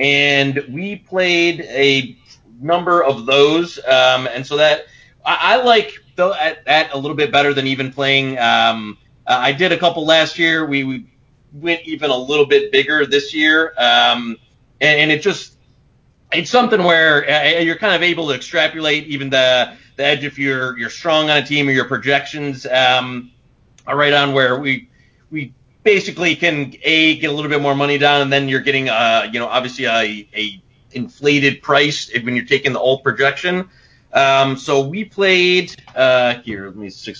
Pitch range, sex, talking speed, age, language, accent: 130-170 Hz, male, 185 wpm, 30-49, English, American